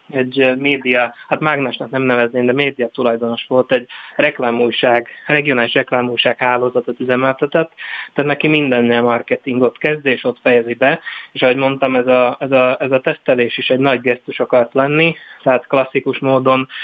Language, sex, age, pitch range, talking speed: Hungarian, male, 20-39, 125-135 Hz, 155 wpm